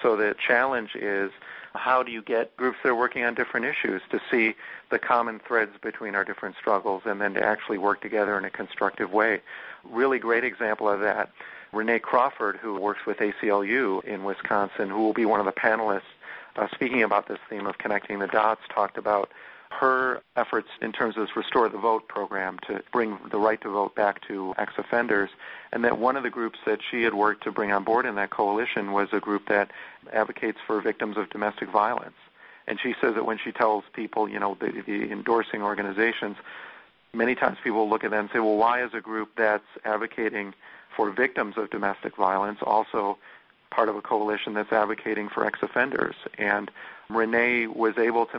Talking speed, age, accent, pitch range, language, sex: 195 wpm, 50-69, American, 100-115 Hz, English, male